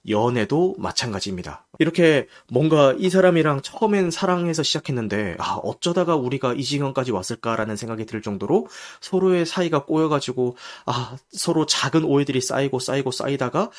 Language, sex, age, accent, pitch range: Korean, male, 30-49, native, 120-175 Hz